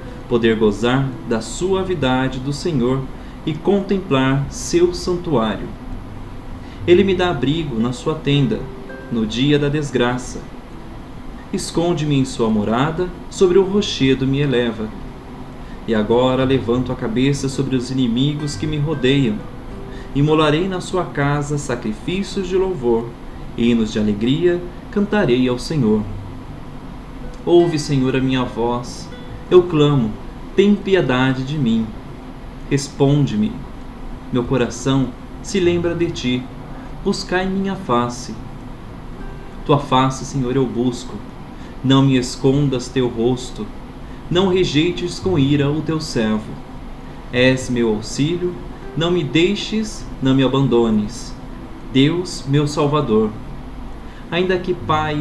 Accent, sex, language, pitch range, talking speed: Brazilian, male, Portuguese, 125-155 Hz, 115 wpm